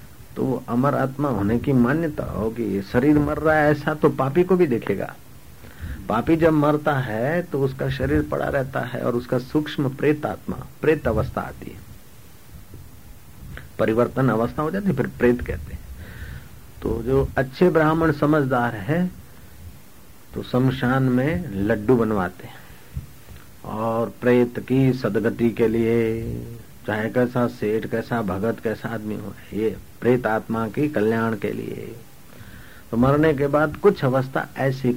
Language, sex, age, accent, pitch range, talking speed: Hindi, male, 50-69, native, 110-140 Hz, 140 wpm